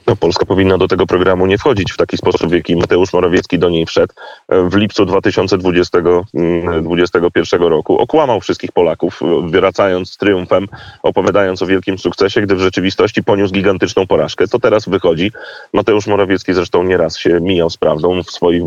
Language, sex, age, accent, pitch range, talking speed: Polish, male, 30-49, native, 95-115 Hz, 165 wpm